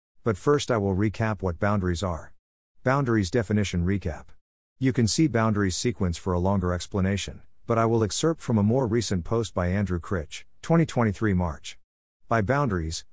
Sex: male